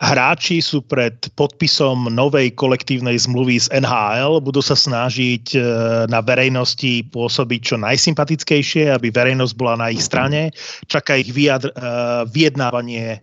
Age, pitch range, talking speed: 30-49, 125-150 Hz, 120 wpm